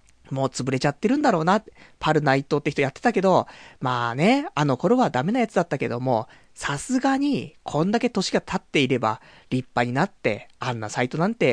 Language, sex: Japanese, male